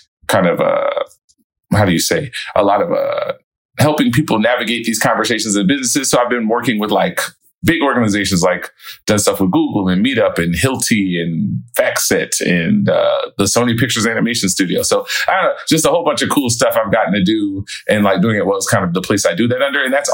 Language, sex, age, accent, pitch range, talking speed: English, male, 30-49, American, 95-130 Hz, 220 wpm